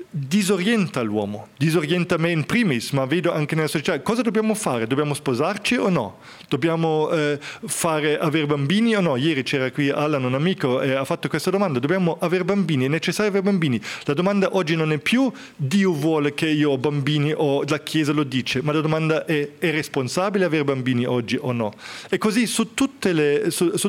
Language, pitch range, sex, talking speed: Italian, 140-180 Hz, male, 195 wpm